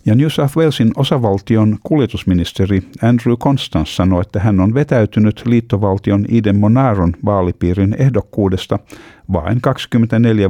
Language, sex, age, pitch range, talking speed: Finnish, male, 50-69, 90-110 Hz, 110 wpm